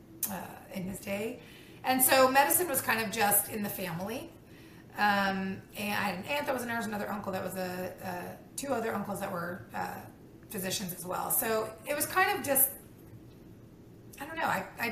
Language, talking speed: English, 195 wpm